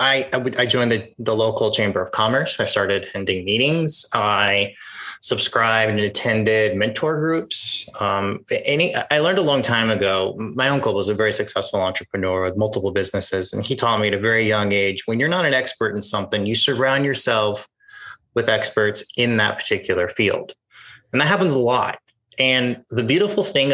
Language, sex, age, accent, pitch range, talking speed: English, male, 30-49, American, 110-145 Hz, 180 wpm